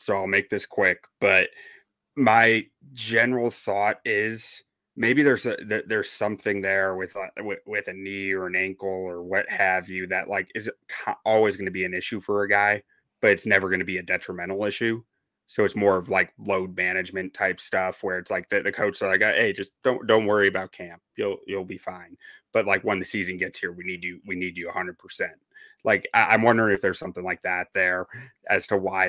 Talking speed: 215 wpm